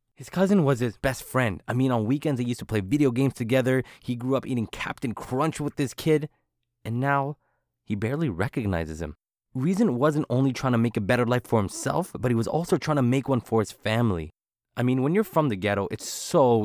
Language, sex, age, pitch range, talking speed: English, male, 20-39, 110-135 Hz, 225 wpm